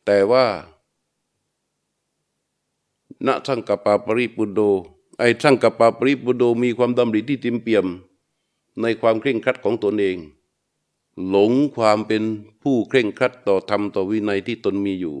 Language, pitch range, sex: Thai, 105-125 Hz, male